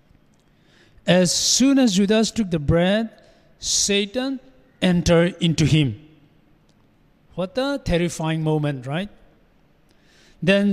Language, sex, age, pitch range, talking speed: English, male, 50-69, 165-220 Hz, 95 wpm